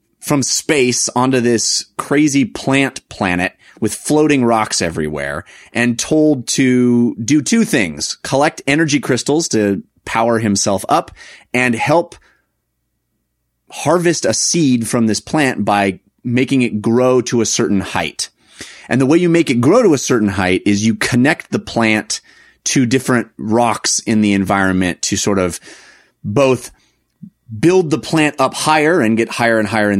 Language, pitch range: English, 100-135 Hz